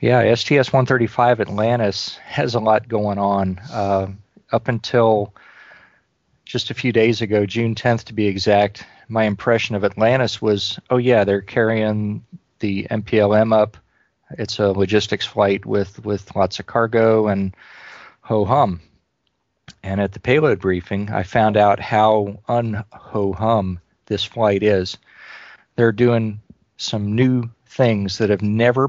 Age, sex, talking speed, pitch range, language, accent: 40-59, male, 135 wpm, 100-115 Hz, English, American